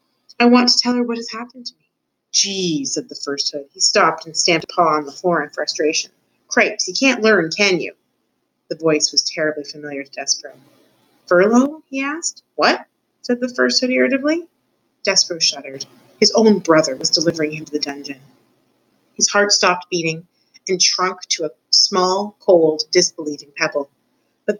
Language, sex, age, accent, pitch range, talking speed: English, female, 30-49, American, 150-235 Hz, 175 wpm